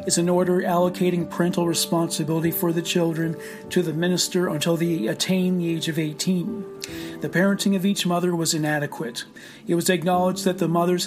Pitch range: 165-185 Hz